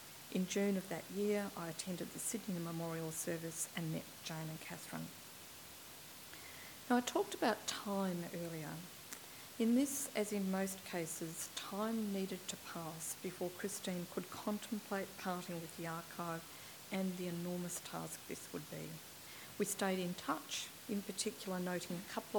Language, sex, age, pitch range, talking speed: English, female, 50-69, 170-210 Hz, 150 wpm